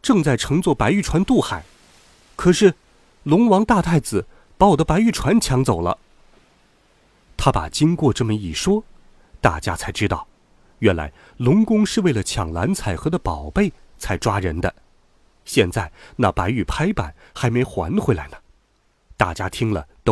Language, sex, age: Chinese, male, 30-49